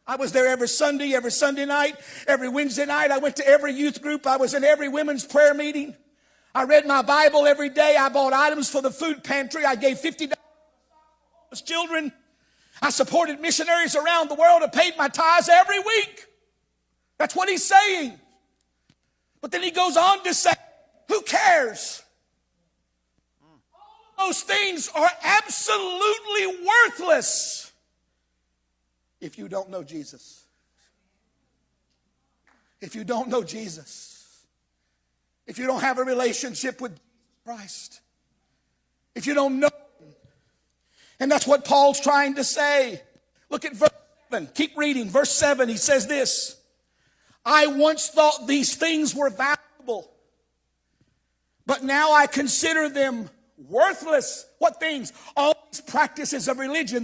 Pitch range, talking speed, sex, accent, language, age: 255-315 Hz, 140 wpm, male, American, English, 50-69